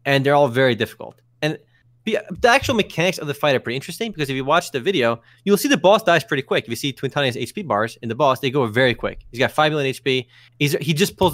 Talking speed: 260 wpm